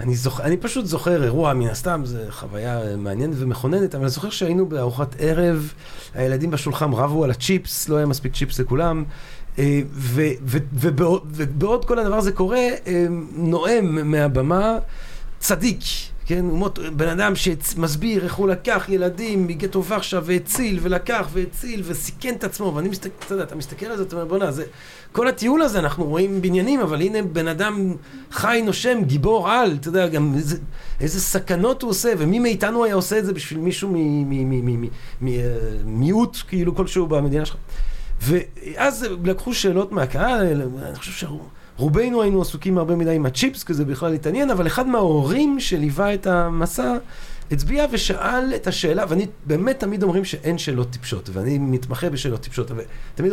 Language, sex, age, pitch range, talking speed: Hebrew, male, 40-59, 140-195 Hz, 160 wpm